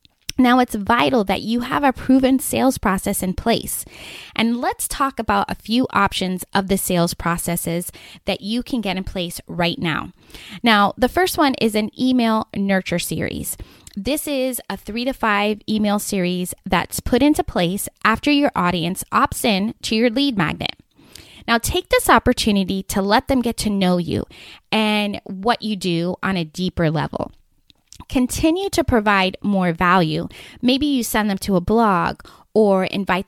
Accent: American